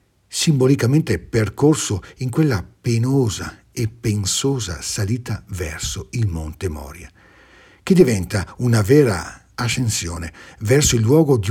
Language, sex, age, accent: Italian, male, 60-79, native